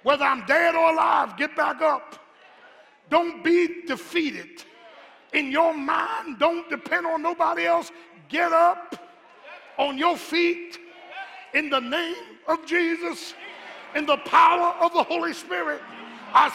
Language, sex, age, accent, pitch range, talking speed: English, male, 50-69, American, 295-350 Hz, 135 wpm